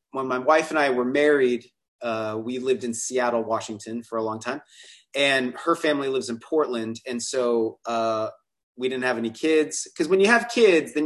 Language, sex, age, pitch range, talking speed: English, male, 30-49, 115-140 Hz, 200 wpm